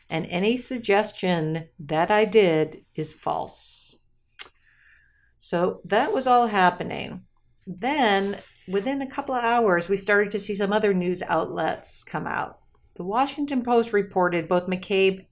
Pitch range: 175-225 Hz